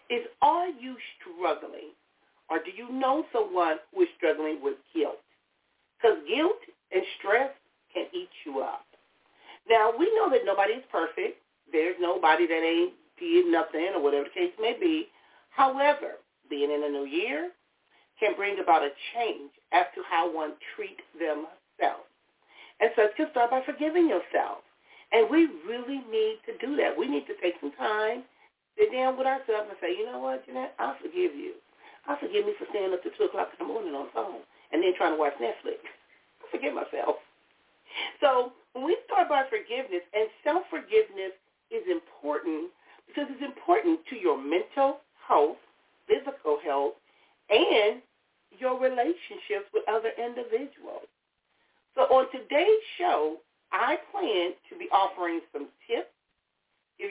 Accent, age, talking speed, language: American, 40-59, 160 wpm, English